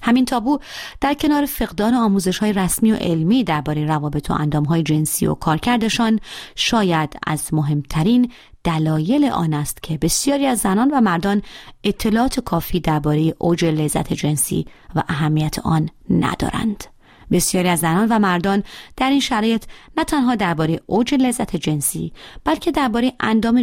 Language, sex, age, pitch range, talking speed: Persian, female, 30-49, 160-230 Hz, 140 wpm